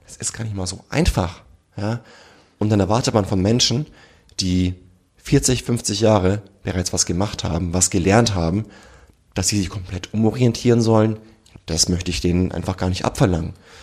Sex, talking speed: male, 170 wpm